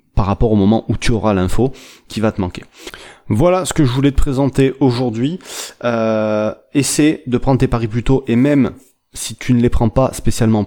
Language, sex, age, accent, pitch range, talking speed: French, male, 30-49, French, 100-125 Hz, 210 wpm